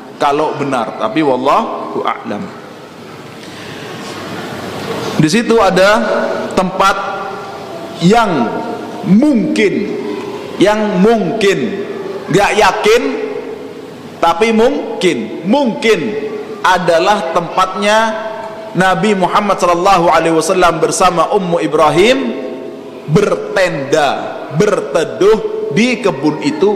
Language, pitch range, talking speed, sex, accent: Indonesian, 170-230 Hz, 75 wpm, male, native